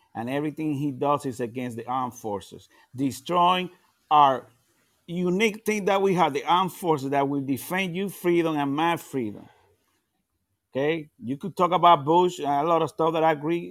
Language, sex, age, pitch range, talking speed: English, male, 50-69, 140-185 Hz, 175 wpm